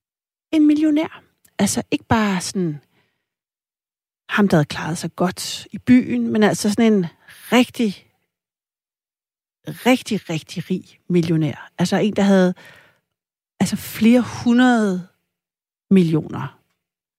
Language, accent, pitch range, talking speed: Danish, native, 170-210 Hz, 105 wpm